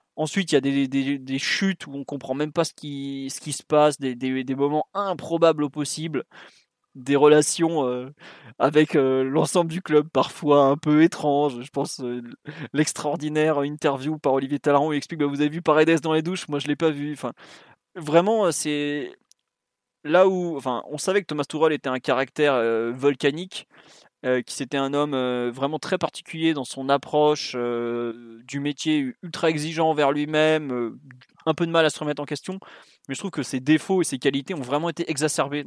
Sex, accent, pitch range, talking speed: male, French, 135-155 Hz, 205 wpm